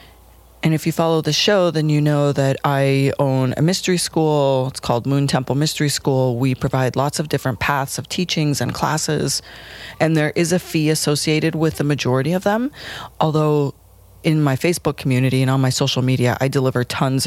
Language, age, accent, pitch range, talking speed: English, 30-49, American, 130-160 Hz, 190 wpm